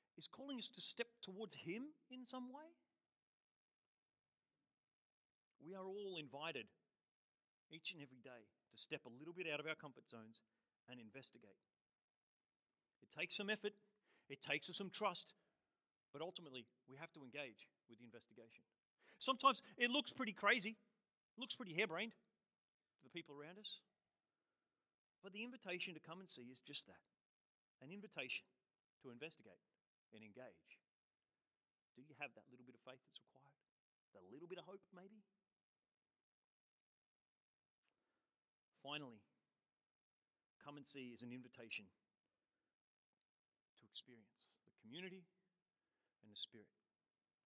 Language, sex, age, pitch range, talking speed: English, male, 40-59, 145-215 Hz, 135 wpm